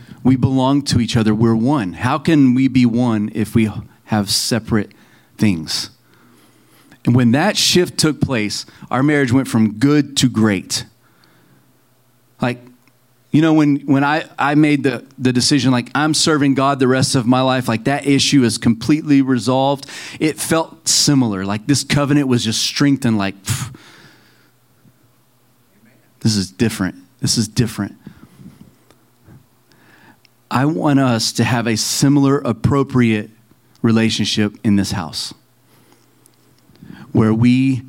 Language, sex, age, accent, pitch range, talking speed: English, male, 40-59, American, 110-135 Hz, 135 wpm